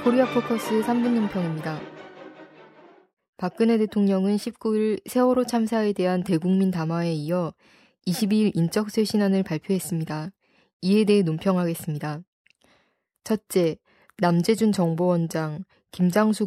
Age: 20-39